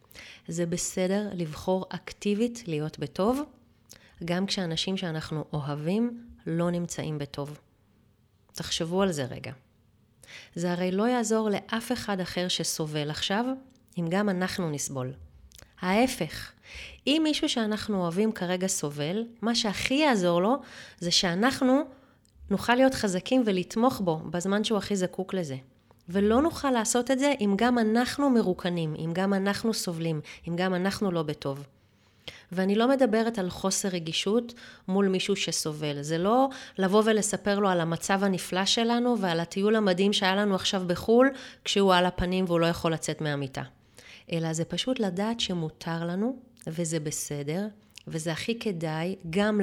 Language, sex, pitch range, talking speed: Hebrew, female, 165-215 Hz, 140 wpm